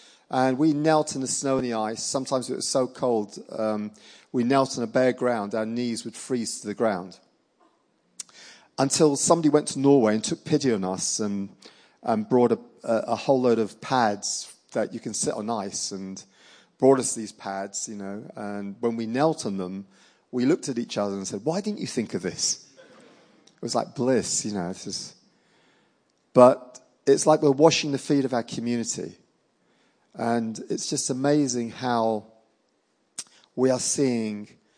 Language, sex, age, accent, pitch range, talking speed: English, male, 40-59, British, 110-140 Hz, 180 wpm